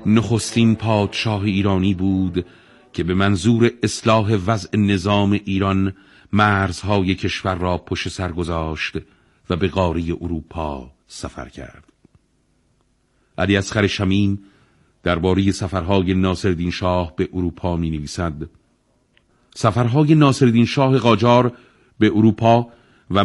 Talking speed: 105 wpm